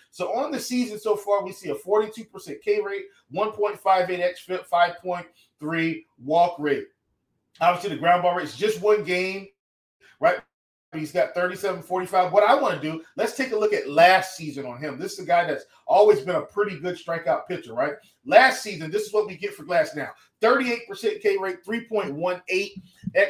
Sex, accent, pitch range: male, American, 175-215 Hz